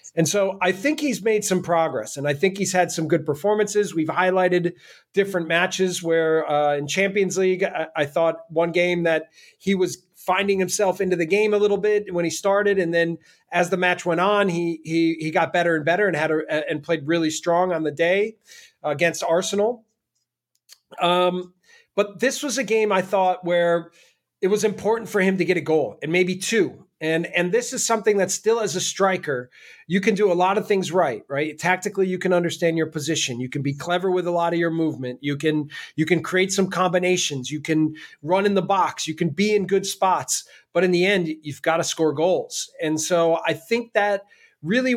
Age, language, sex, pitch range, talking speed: 30-49, English, male, 165-200 Hz, 215 wpm